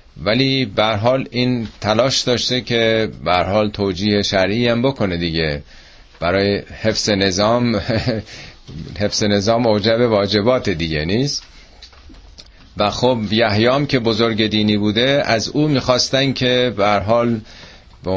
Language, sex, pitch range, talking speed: Persian, male, 85-115 Hz, 120 wpm